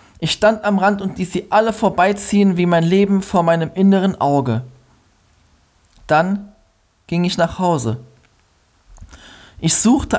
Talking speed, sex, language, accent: 135 wpm, male, German, German